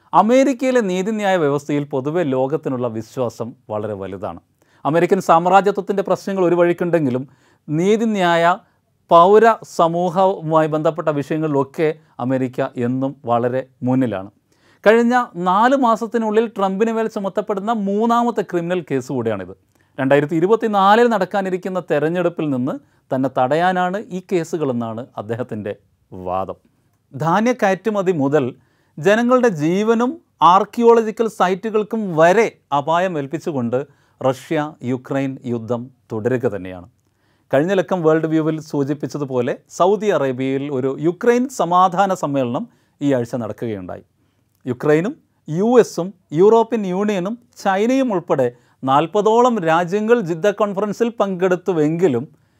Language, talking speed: Malayalam, 95 wpm